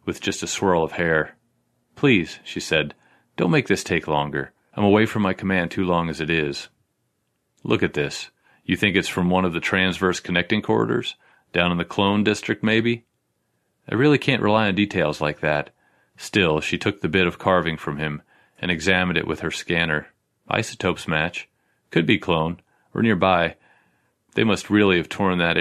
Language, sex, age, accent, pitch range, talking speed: English, male, 30-49, American, 80-95 Hz, 185 wpm